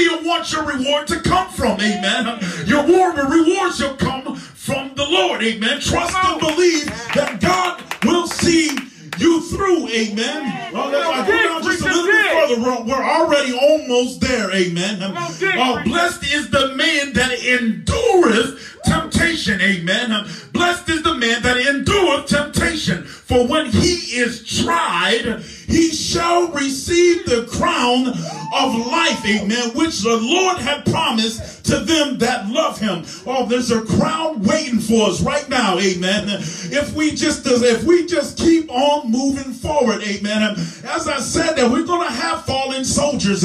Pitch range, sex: 220-325 Hz, male